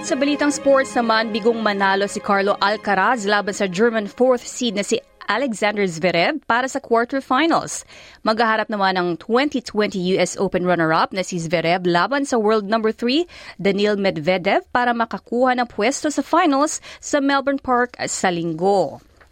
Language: Filipino